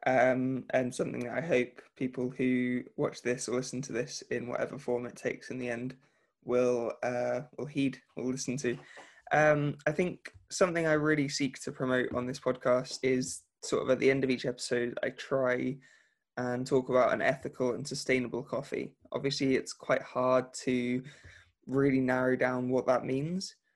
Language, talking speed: English, 180 wpm